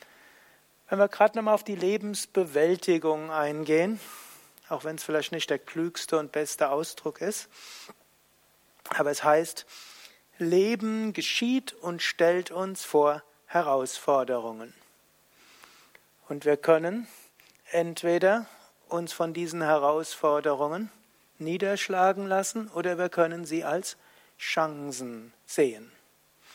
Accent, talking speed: German, 105 wpm